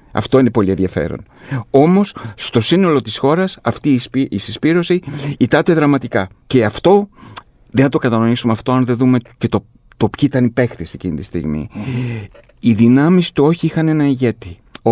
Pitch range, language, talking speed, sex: 115-145 Hz, Greek, 170 wpm, male